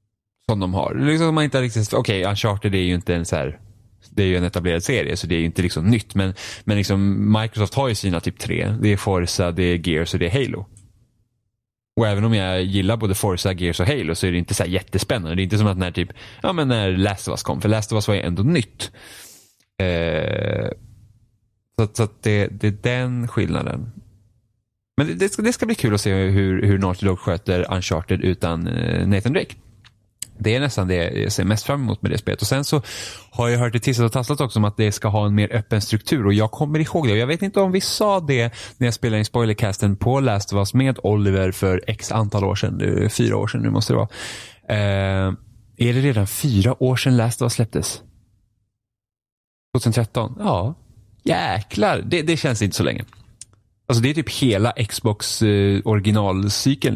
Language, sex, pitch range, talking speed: Swedish, male, 100-120 Hz, 215 wpm